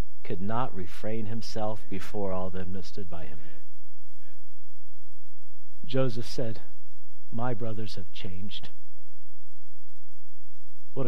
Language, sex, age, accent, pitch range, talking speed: English, male, 50-69, American, 85-120 Hz, 95 wpm